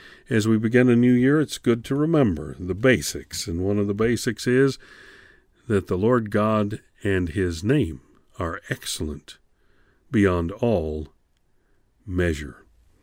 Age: 50-69